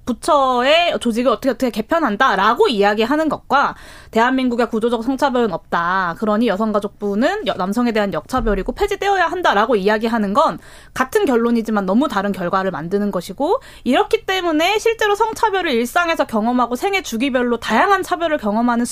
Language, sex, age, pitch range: Korean, female, 20-39, 210-290 Hz